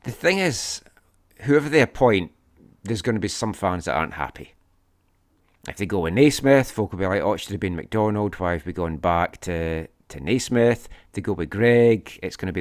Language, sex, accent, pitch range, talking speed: English, male, British, 90-115 Hz, 225 wpm